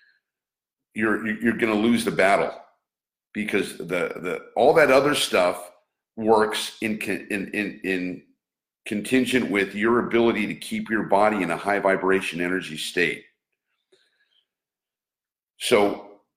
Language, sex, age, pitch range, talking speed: English, male, 50-69, 95-125 Hz, 125 wpm